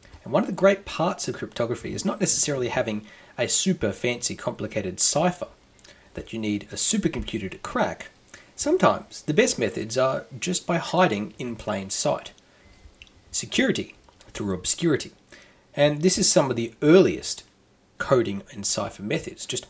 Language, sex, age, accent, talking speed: English, male, 30-49, Australian, 150 wpm